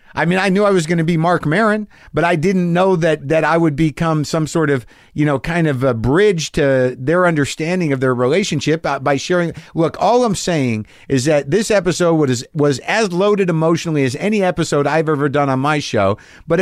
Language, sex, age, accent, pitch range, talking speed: English, male, 50-69, American, 135-180 Hz, 215 wpm